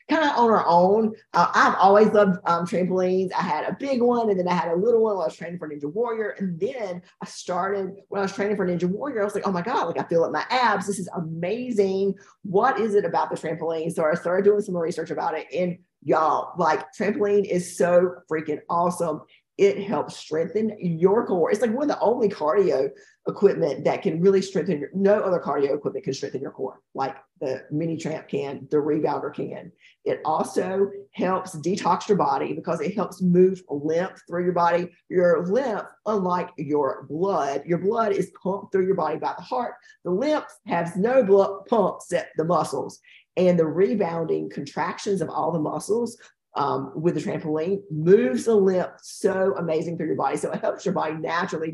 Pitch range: 170-210 Hz